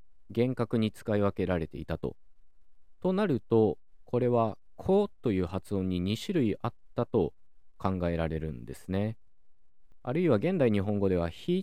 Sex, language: male, Japanese